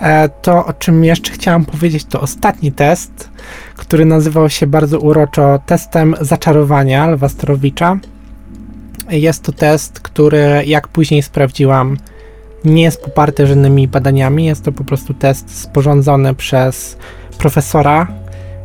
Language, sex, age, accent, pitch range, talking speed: Polish, male, 20-39, native, 135-155 Hz, 120 wpm